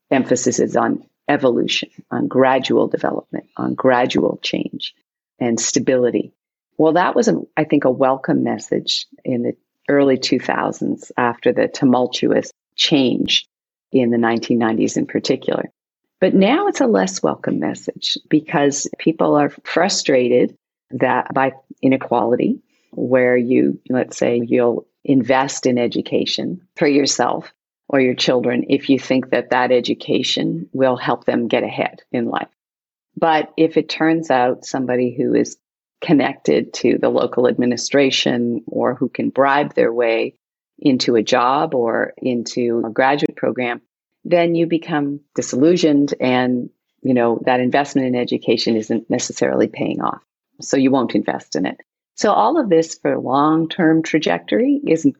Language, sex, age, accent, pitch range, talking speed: English, female, 40-59, American, 125-155 Hz, 140 wpm